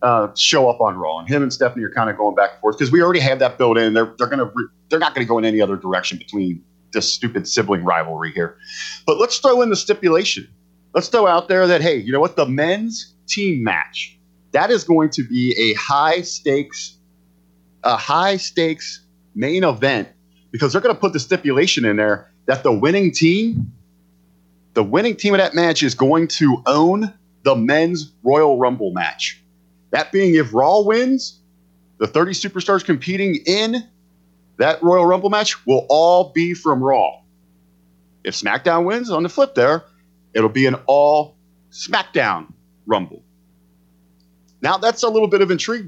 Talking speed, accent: 180 wpm, American